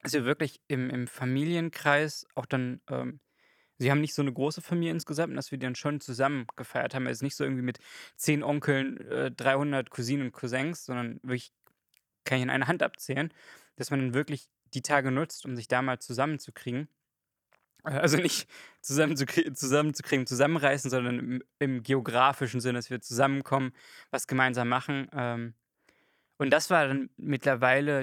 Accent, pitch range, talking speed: German, 130-155 Hz, 165 wpm